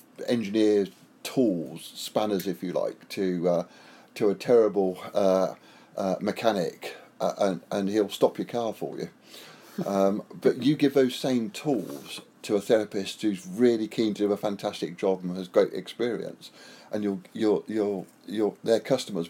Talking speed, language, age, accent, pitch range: 160 wpm, English, 50-69, British, 95-115 Hz